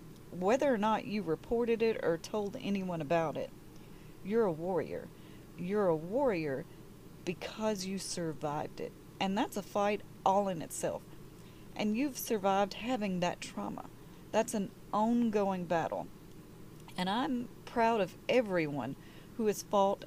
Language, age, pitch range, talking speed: English, 40-59, 160-210 Hz, 140 wpm